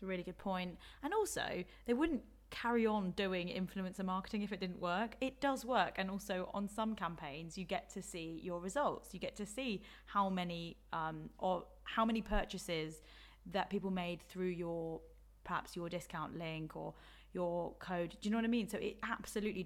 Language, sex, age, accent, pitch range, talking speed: English, female, 20-39, British, 175-210 Hz, 190 wpm